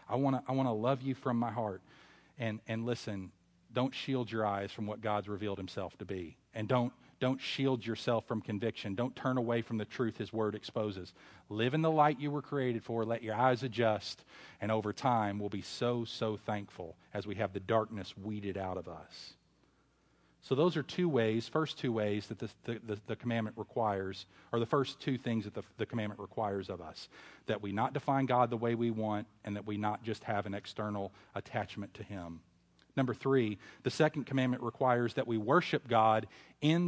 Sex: male